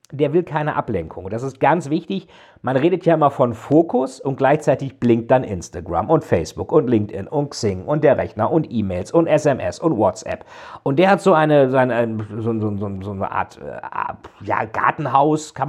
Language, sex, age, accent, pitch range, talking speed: German, male, 50-69, German, 110-150 Hz, 170 wpm